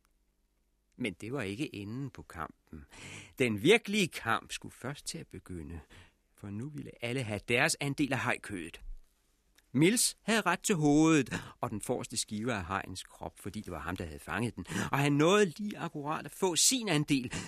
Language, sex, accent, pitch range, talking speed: Danish, male, native, 90-135 Hz, 180 wpm